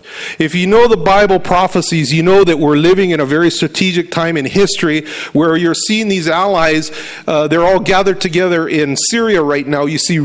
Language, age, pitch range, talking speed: English, 40-59, 150-185 Hz, 200 wpm